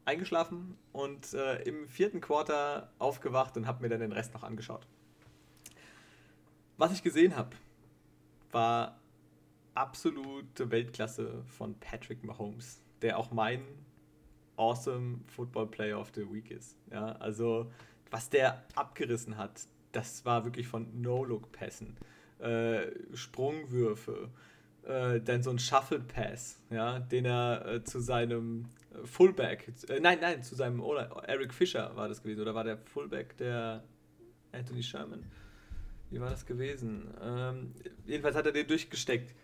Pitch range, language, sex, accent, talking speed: 110-135 Hz, German, male, German, 130 wpm